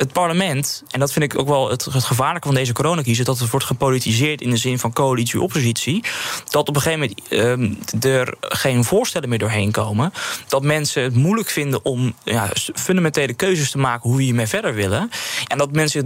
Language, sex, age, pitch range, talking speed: Dutch, male, 20-39, 120-160 Hz, 200 wpm